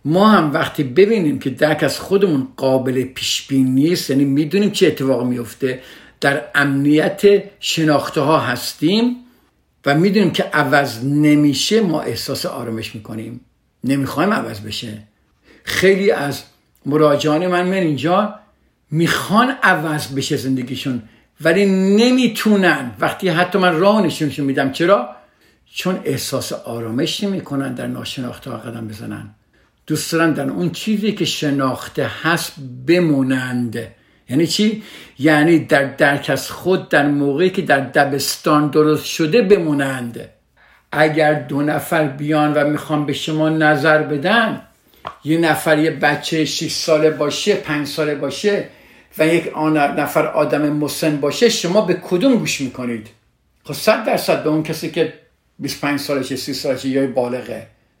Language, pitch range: Persian, 135-170 Hz